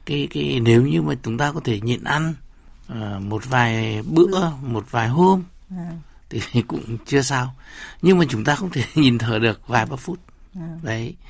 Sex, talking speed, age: male, 185 wpm, 60-79